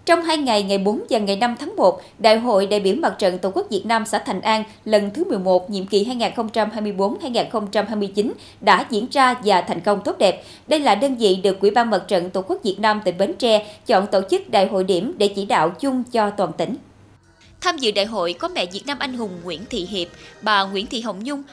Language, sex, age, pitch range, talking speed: Vietnamese, female, 20-39, 195-255 Hz, 235 wpm